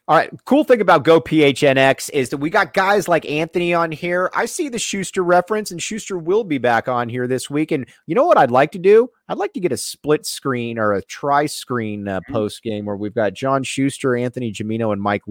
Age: 30-49